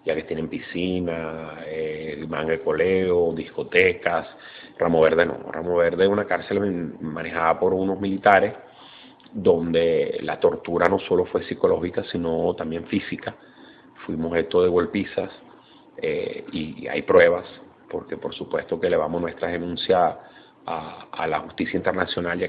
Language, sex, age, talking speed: Spanish, male, 40-59, 140 wpm